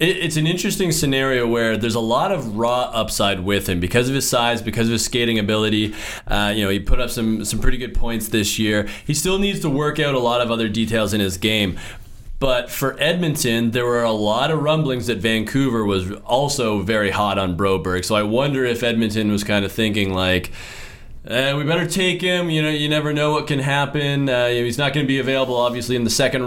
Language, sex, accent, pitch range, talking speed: English, male, American, 105-130 Hz, 230 wpm